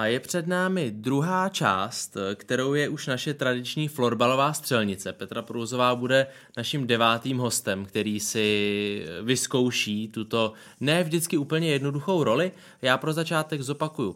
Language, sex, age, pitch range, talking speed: Czech, male, 20-39, 105-135 Hz, 135 wpm